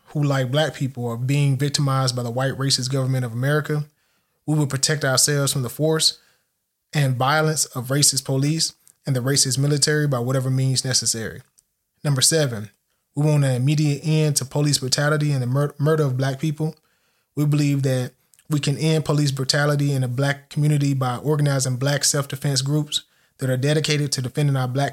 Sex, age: male, 20-39